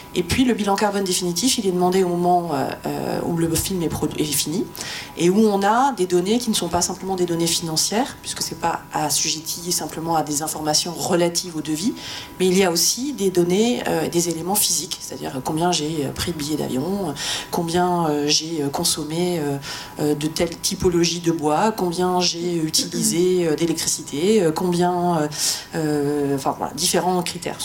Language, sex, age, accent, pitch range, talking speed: French, female, 30-49, French, 155-195 Hz, 185 wpm